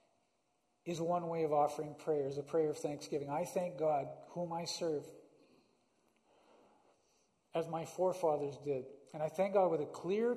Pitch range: 155-185 Hz